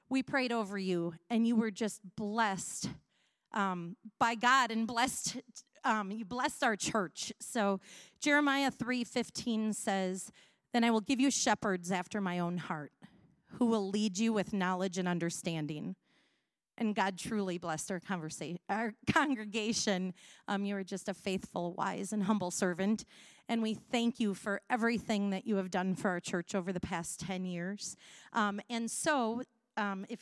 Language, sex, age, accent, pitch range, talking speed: English, female, 30-49, American, 195-240 Hz, 160 wpm